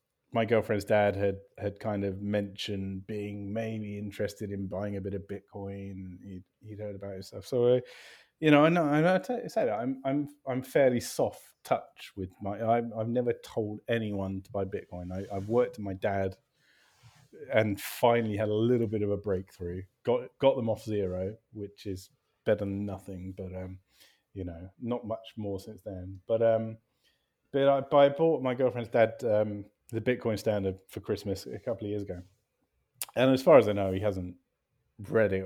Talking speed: 190 wpm